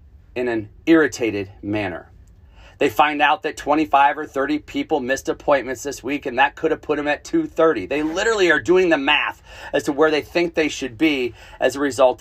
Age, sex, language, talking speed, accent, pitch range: 40-59, male, English, 200 wpm, American, 90-145 Hz